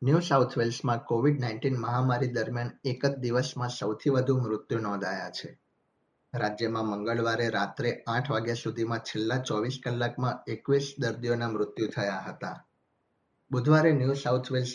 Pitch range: 110-135 Hz